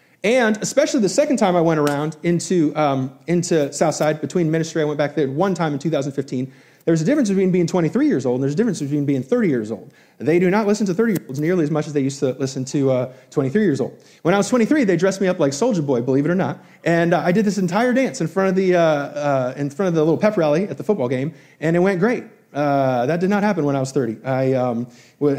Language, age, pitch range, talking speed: English, 30-49, 145-195 Hz, 265 wpm